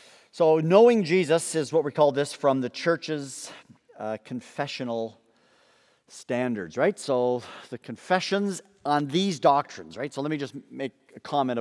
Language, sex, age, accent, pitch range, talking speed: English, male, 50-69, American, 115-145 Hz, 150 wpm